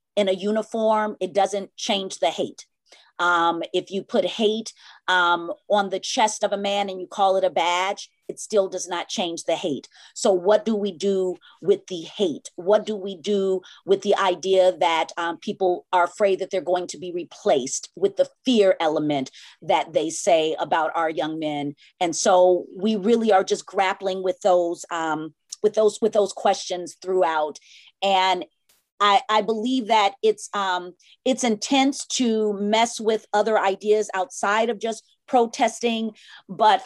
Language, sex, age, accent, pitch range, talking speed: English, female, 40-59, American, 185-220 Hz, 170 wpm